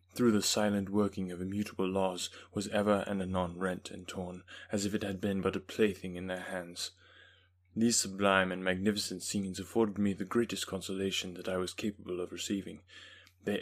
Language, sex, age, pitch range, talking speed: English, male, 20-39, 95-105 Hz, 185 wpm